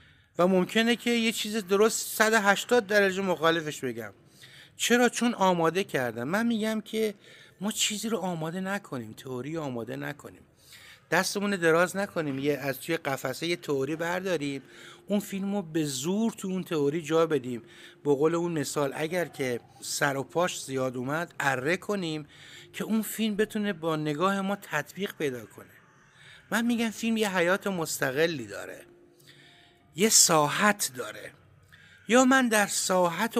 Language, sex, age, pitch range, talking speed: Persian, male, 60-79, 135-200 Hz, 145 wpm